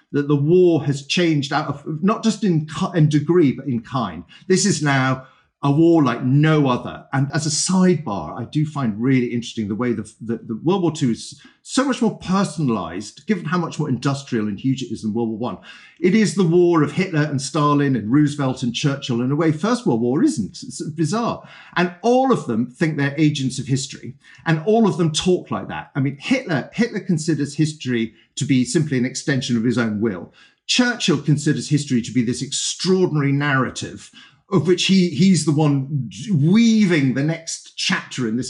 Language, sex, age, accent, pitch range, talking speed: English, male, 50-69, British, 125-175 Hz, 200 wpm